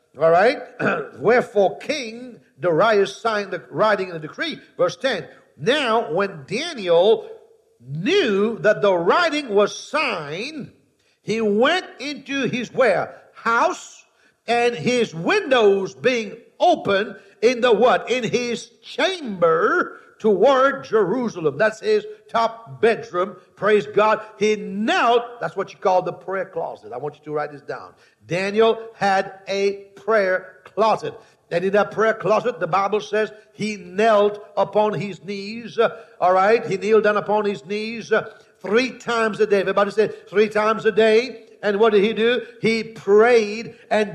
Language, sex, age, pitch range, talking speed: English, male, 60-79, 195-230 Hz, 145 wpm